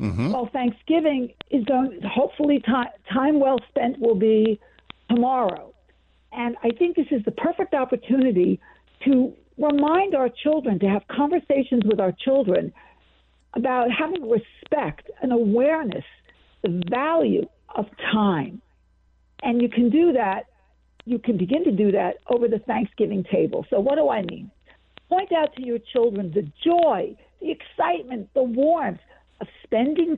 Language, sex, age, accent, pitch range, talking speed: English, female, 60-79, American, 220-280 Hz, 140 wpm